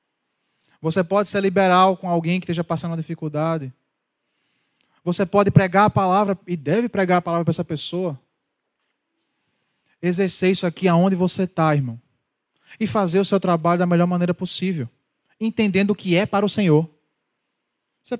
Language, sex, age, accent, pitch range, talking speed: Portuguese, male, 20-39, Brazilian, 155-195 Hz, 160 wpm